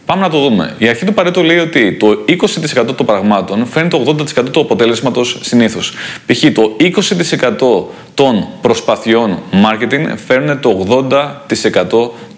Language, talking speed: Greek, 140 wpm